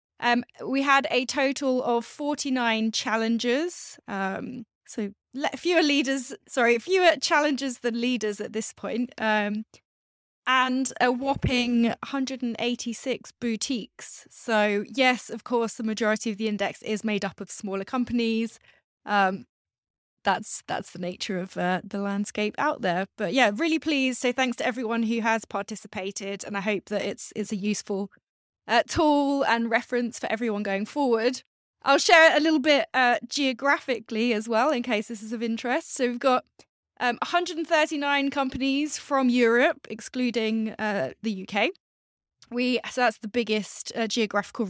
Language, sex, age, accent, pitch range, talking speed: English, female, 20-39, British, 215-265 Hz, 155 wpm